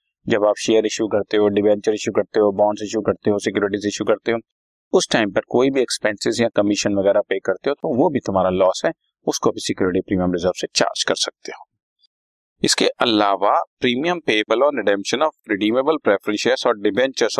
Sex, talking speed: male, 105 wpm